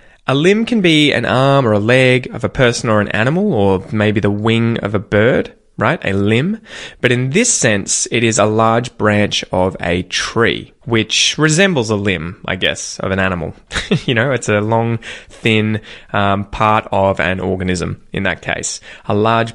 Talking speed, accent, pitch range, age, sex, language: 190 wpm, Australian, 105-145 Hz, 20-39, male, English